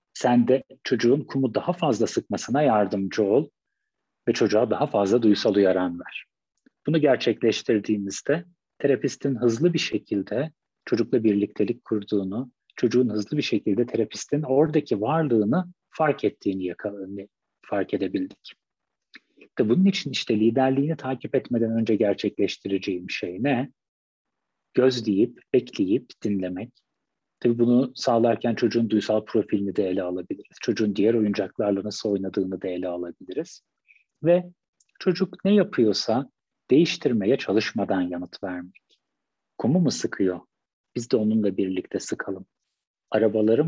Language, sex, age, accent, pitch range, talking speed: Turkish, male, 40-59, native, 100-145 Hz, 115 wpm